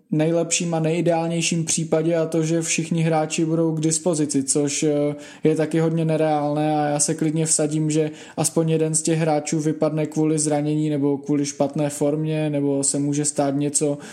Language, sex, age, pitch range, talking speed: Czech, male, 20-39, 155-170 Hz, 170 wpm